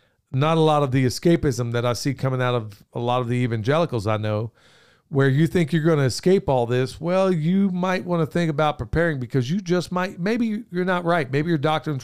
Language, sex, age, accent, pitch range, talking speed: English, male, 50-69, American, 115-165 Hz, 235 wpm